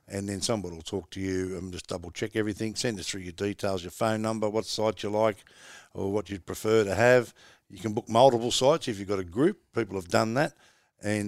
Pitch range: 100-120 Hz